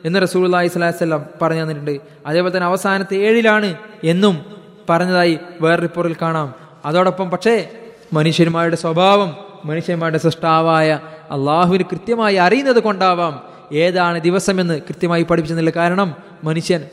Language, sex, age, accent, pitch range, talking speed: Malayalam, male, 20-39, native, 165-205 Hz, 105 wpm